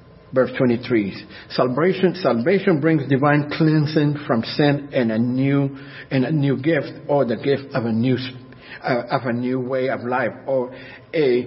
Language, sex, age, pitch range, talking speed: English, male, 50-69, 125-160 Hz, 160 wpm